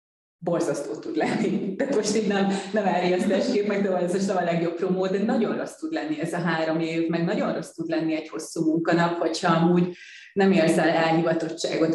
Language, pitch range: Hungarian, 165-190 Hz